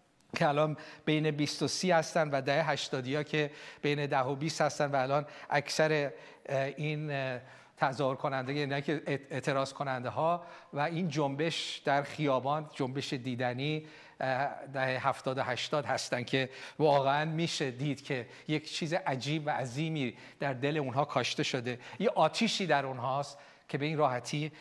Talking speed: 155 wpm